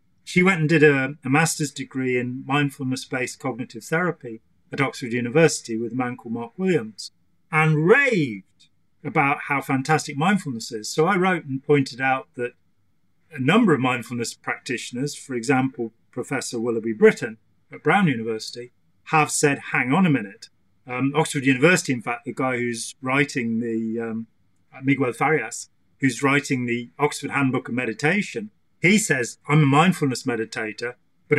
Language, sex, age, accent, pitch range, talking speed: English, male, 40-59, British, 120-155 Hz, 155 wpm